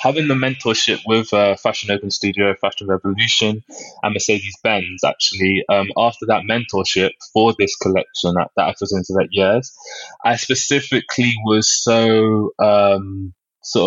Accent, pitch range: British, 100-110 Hz